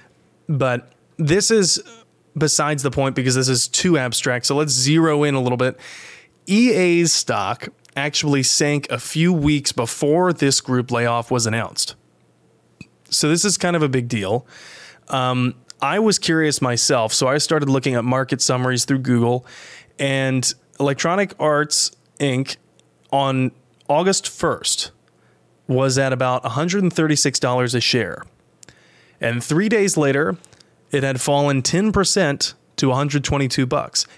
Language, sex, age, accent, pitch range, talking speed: English, male, 20-39, American, 130-155 Hz, 135 wpm